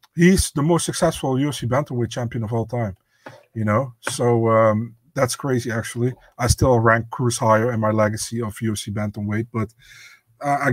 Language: English